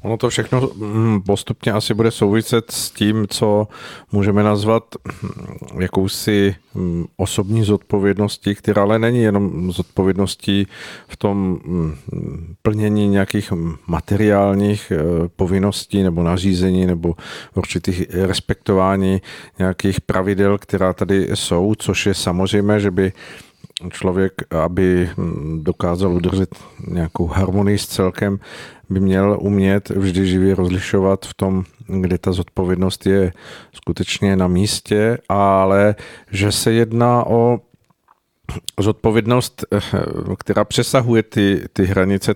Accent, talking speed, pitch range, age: native, 105 wpm, 95-105 Hz, 50-69